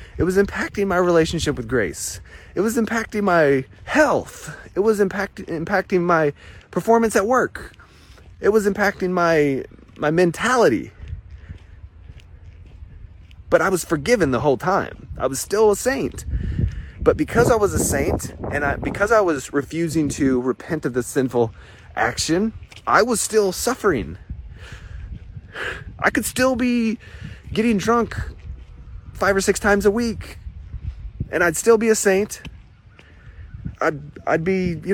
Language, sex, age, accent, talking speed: English, male, 30-49, American, 135 wpm